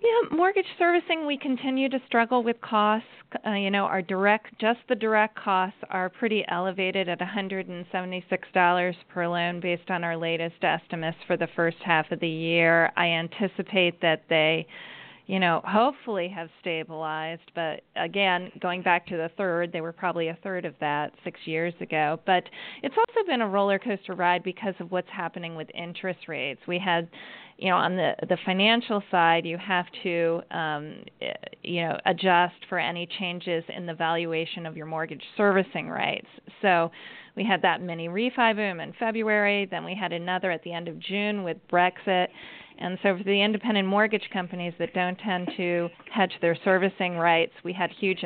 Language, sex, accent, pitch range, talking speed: English, female, American, 170-200 Hz, 180 wpm